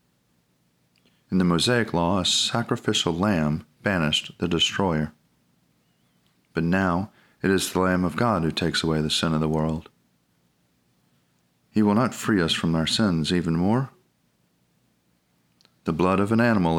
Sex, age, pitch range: male, 40-59, 80-105 Hz